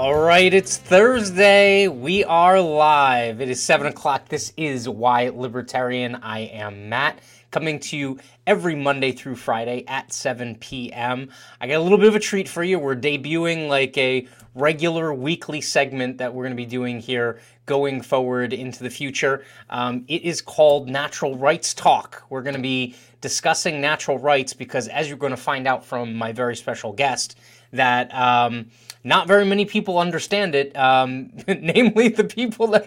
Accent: American